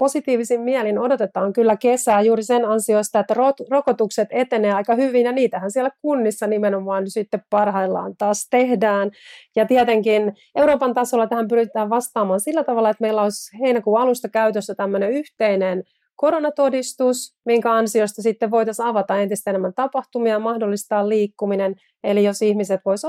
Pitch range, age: 205-250 Hz, 30-49